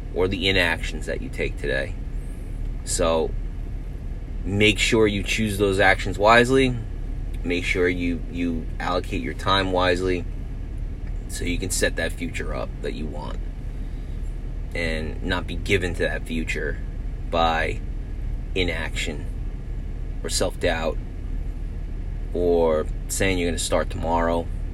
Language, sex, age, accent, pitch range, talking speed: English, male, 30-49, American, 80-95 Hz, 125 wpm